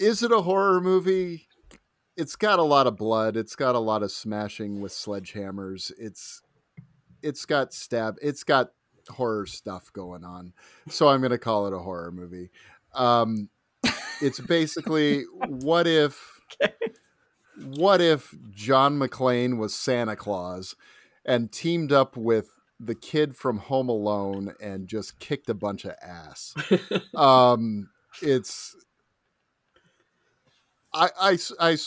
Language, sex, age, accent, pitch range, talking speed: English, male, 40-59, American, 105-150 Hz, 135 wpm